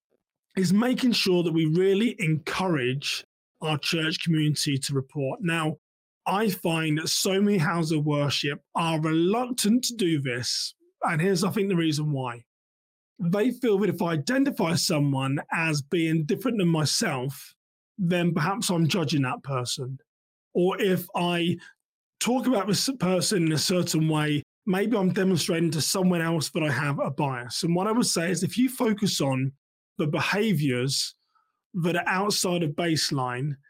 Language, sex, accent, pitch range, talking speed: English, male, British, 150-190 Hz, 160 wpm